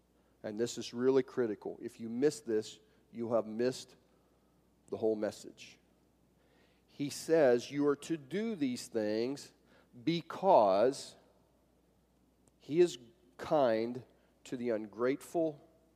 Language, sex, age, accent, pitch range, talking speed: English, male, 40-59, American, 110-140 Hz, 115 wpm